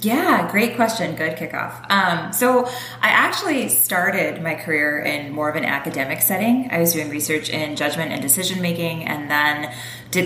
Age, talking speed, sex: 20-39, 175 wpm, female